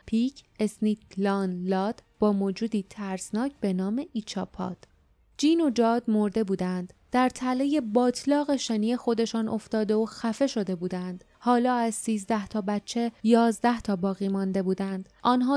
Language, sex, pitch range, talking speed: Persian, female, 200-245 Hz, 135 wpm